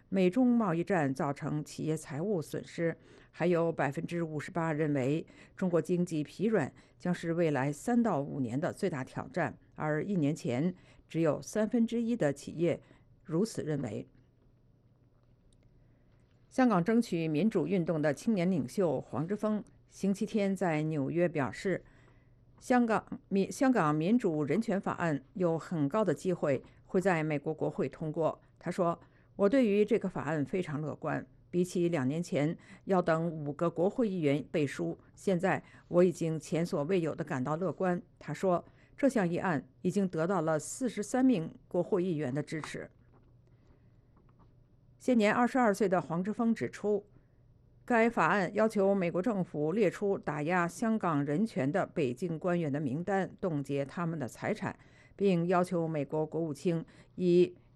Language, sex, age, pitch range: English, female, 50-69, 145-195 Hz